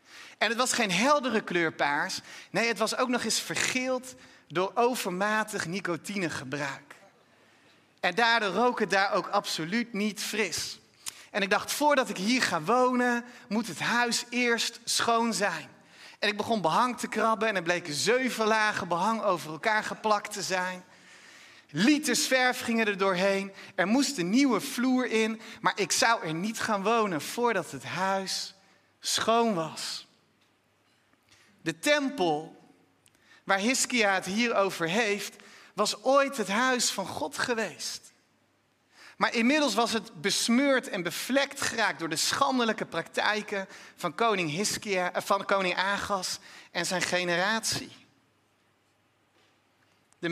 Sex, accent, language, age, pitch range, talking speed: male, Dutch, Dutch, 30-49, 180-235 Hz, 135 wpm